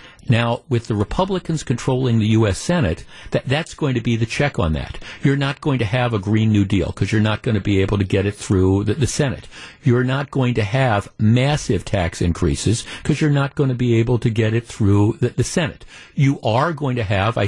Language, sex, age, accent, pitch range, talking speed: English, male, 50-69, American, 105-140 Hz, 235 wpm